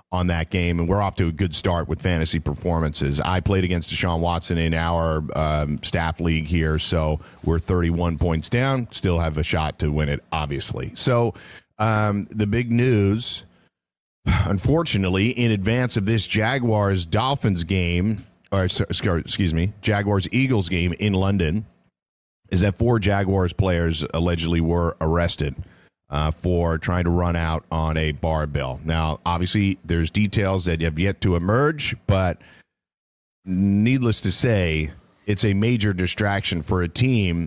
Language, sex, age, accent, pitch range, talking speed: English, male, 40-59, American, 85-110 Hz, 155 wpm